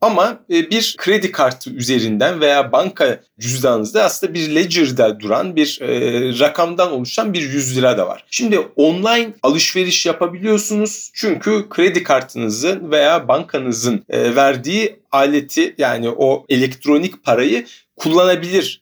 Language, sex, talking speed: Turkish, male, 115 wpm